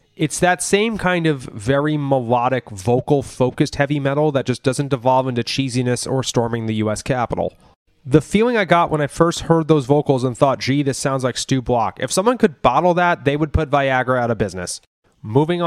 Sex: male